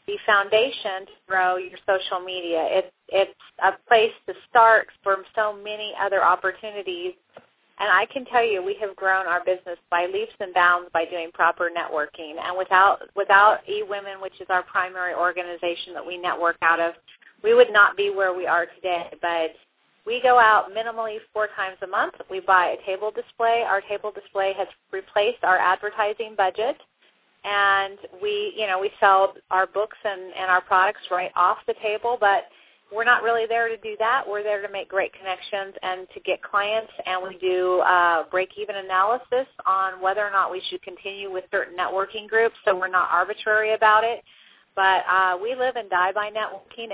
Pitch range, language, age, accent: 185-215 Hz, English, 30-49, American